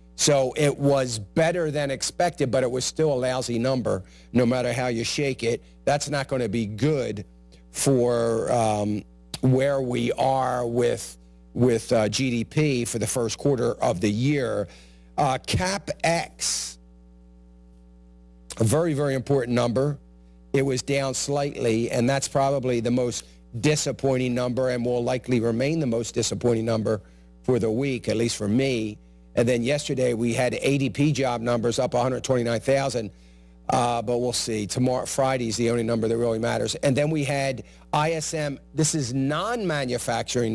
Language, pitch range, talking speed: English, 115-140 Hz, 155 wpm